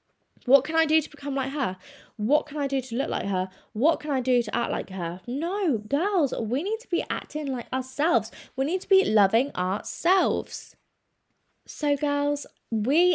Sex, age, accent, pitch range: female, 20-39, British, 200-270 Hz